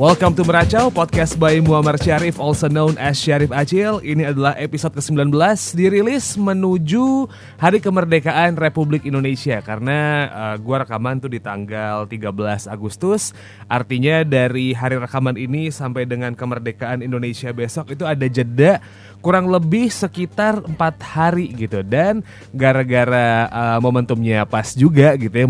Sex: male